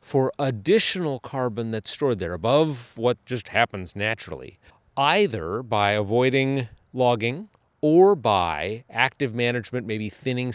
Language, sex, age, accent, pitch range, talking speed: English, male, 40-59, American, 110-140 Hz, 120 wpm